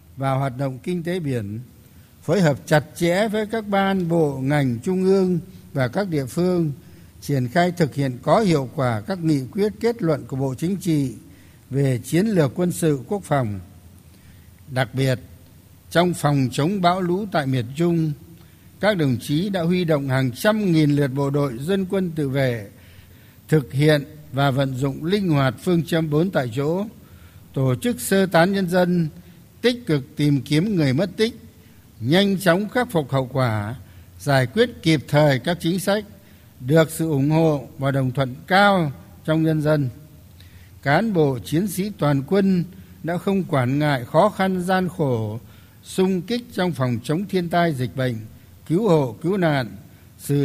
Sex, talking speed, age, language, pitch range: male, 175 wpm, 60-79, Vietnamese, 130-180 Hz